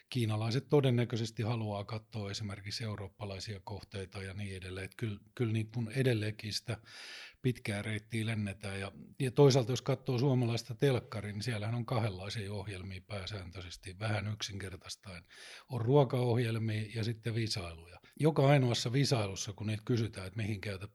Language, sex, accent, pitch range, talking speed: Finnish, male, native, 100-120 Hz, 135 wpm